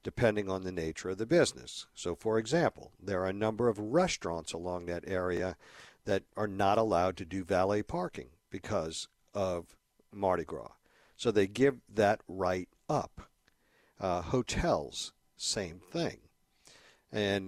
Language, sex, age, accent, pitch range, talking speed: English, male, 50-69, American, 90-110 Hz, 145 wpm